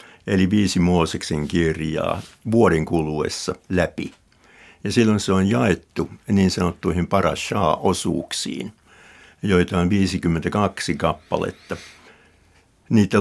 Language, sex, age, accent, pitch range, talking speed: Finnish, male, 60-79, native, 85-100 Hz, 90 wpm